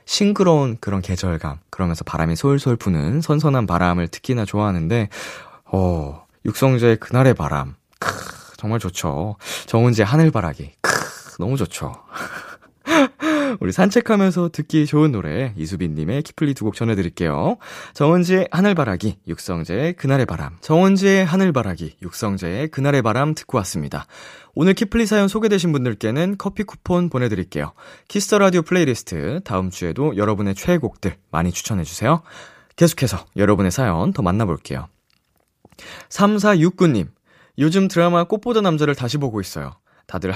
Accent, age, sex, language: native, 20-39, male, Korean